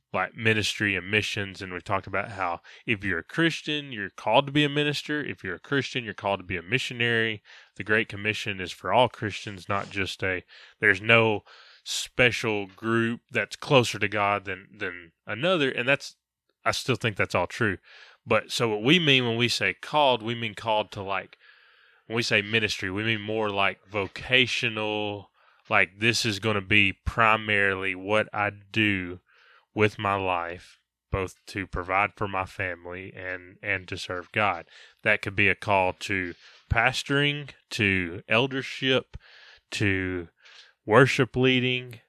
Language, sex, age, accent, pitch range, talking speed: English, male, 20-39, American, 95-120 Hz, 165 wpm